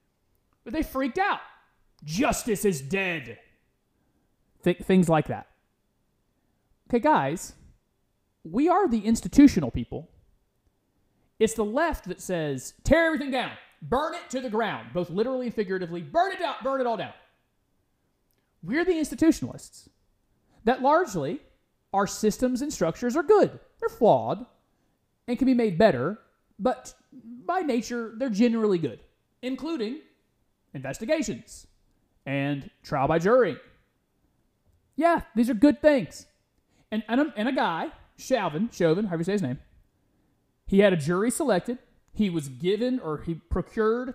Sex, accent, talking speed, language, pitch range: male, American, 135 wpm, English, 175-260 Hz